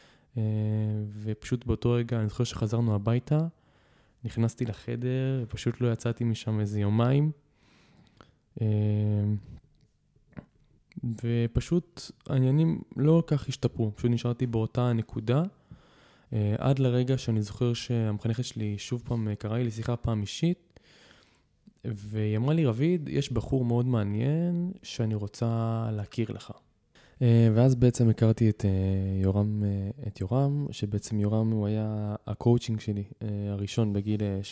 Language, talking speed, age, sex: Hebrew, 120 wpm, 20-39, male